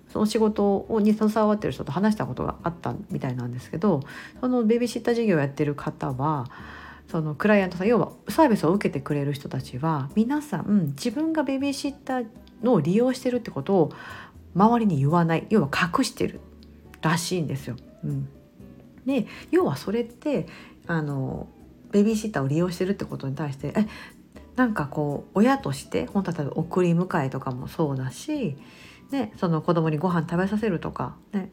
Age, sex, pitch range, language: 50-69, female, 150-225 Hz, Japanese